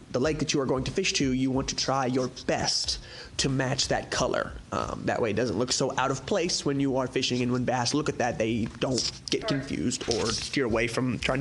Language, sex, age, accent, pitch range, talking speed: English, male, 20-39, American, 120-150 Hz, 250 wpm